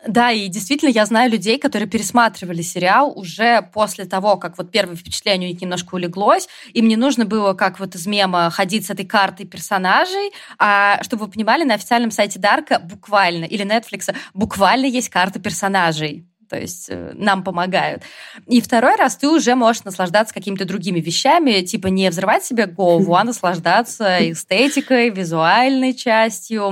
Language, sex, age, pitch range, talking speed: Russian, female, 20-39, 185-245 Hz, 160 wpm